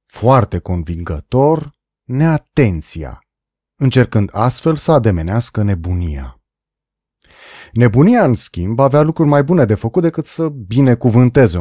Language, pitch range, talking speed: Romanian, 100-150 Hz, 105 wpm